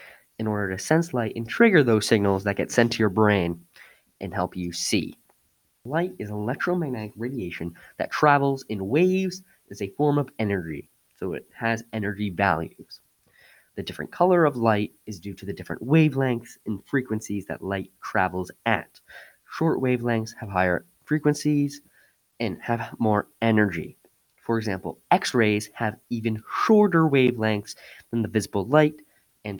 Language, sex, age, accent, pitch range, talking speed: English, male, 20-39, American, 100-130 Hz, 150 wpm